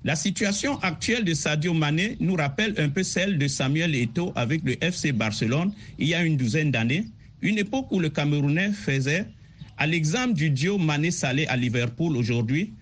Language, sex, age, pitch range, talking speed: French, male, 50-69, 135-190 Hz, 180 wpm